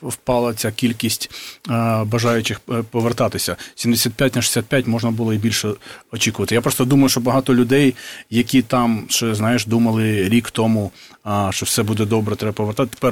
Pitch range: 110-130 Hz